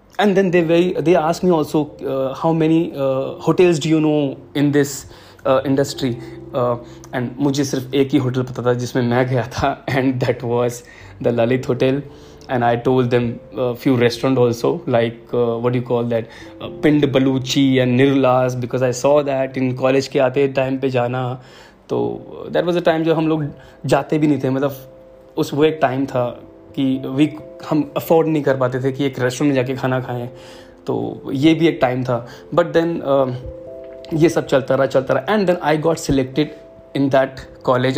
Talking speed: 190 wpm